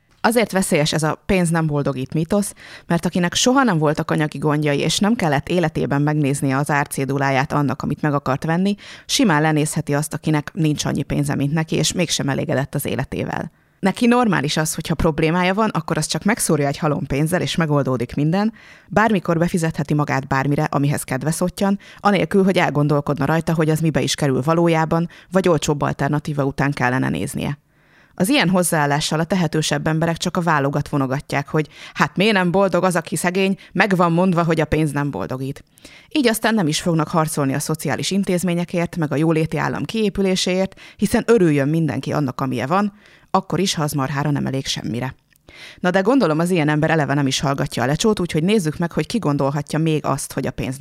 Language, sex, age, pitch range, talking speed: Hungarian, female, 20-39, 145-180 Hz, 185 wpm